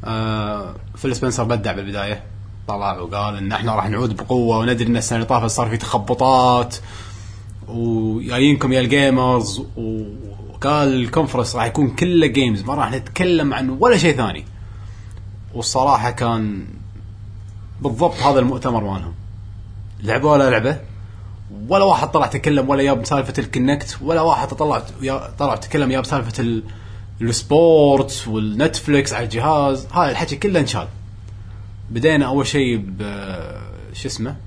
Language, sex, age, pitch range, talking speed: Arabic, male, 20-39, 100-130 Hz, 130 wpm